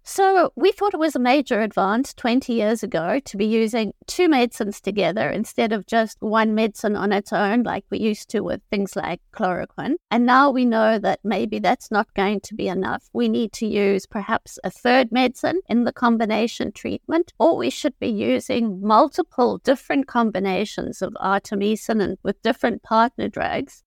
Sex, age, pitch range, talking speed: female, 50-69, 200-250 Hz, 180 wpm